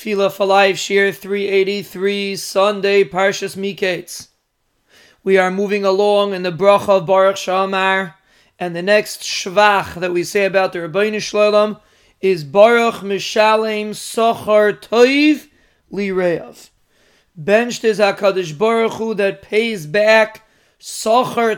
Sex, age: male, 30-49